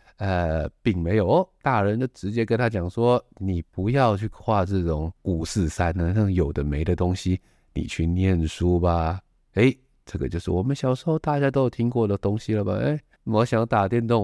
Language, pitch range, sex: Chinese, 85-115 Hz, male